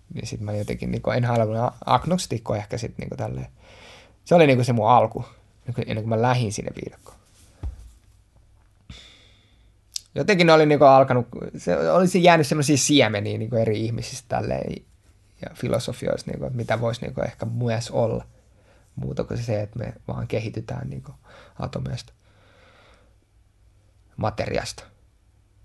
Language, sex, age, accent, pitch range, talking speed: Finnish, male, 20-39, native, 100-130 Hz, 115 wpm